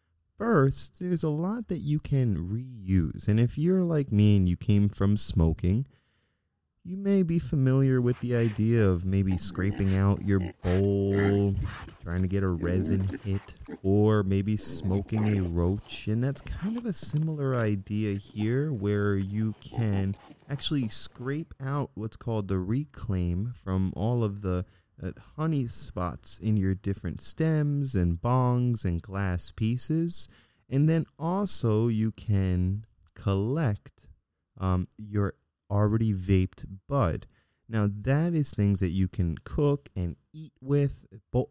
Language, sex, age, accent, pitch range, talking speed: English, male, 20-39, American, 95-135 Hz, 140 wpm